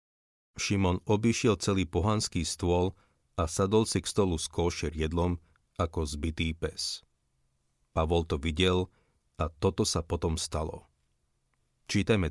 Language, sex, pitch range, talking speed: Slovak, male, 80-95 Hz, 120 wpm